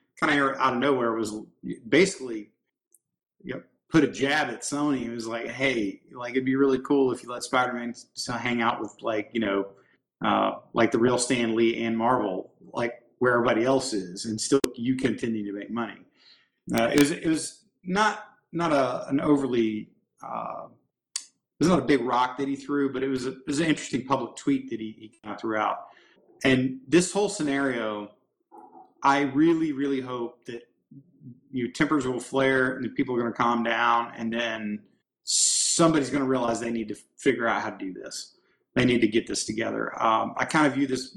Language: English